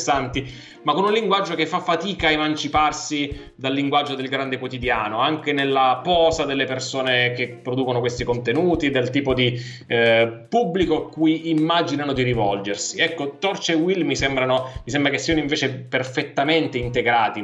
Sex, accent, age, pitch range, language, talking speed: male, native, 20-39, 120-150 Hz, Italian, 160 wpm